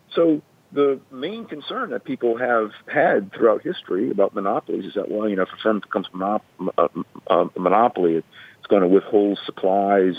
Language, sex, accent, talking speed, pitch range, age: English, male, American, 165 wpm, 95-140 Hz, 50-69